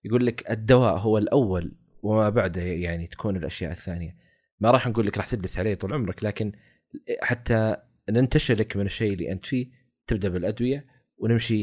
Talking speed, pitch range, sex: 160 wpm, 90-125 Hz, male